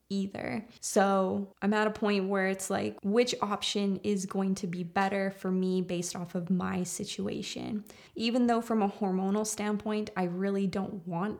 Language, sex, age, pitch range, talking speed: English, female, 20-39, 195-220 Hz, 175 wpm